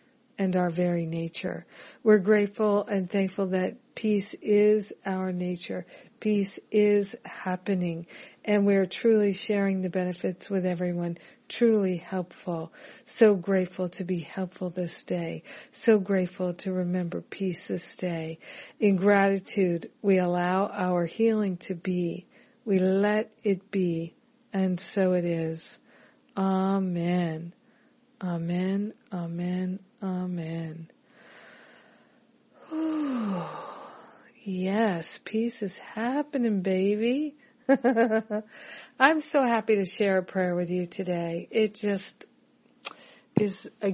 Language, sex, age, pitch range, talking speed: English, female, 50-69, 180-215 Hz, 110 wpm